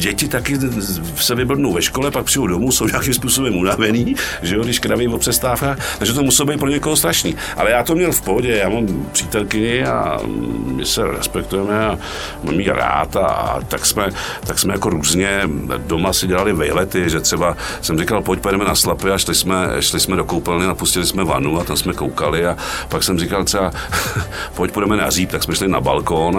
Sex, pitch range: male, 85-120 Hz